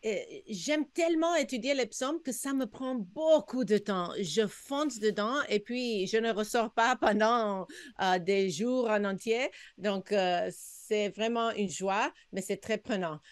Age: 50-69